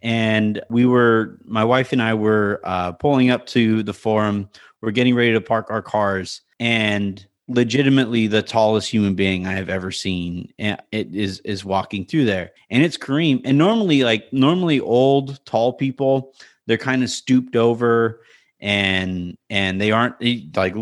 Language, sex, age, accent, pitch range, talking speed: English, male, 30-49, American, 105-125 Hz, 165 wpm